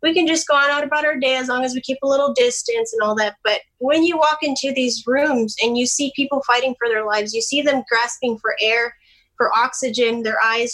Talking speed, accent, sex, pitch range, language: 250 wpm, American, female, 230-280 Hz, English